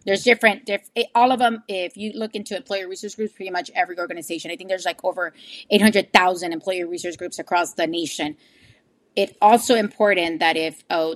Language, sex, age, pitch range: English, female, 30-49, 180-220 Hz